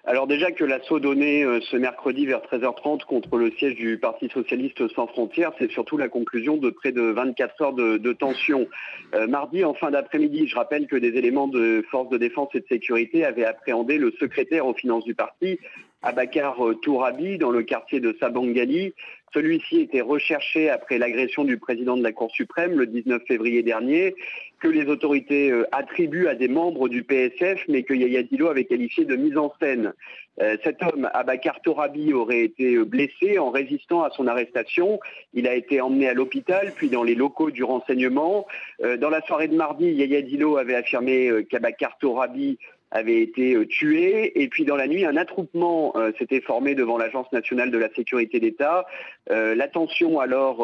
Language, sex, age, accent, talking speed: French, male, 40-59, French, 180 wpm